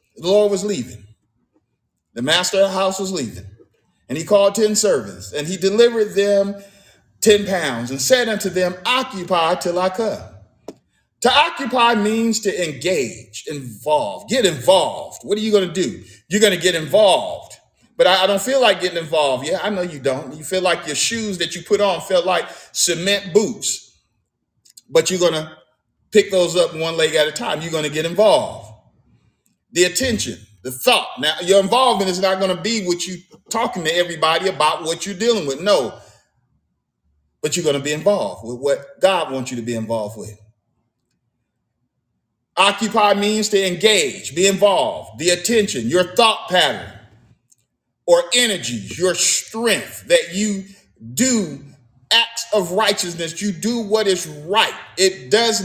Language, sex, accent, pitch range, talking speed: English, male, American, 155-215 Hz, 170 wpm